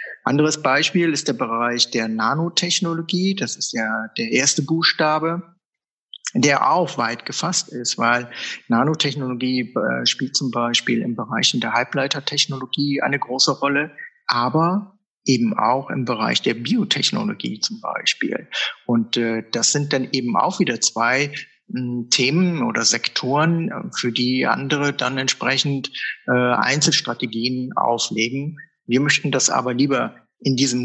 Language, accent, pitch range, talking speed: German, German, 120-150 Hz, 125 wpm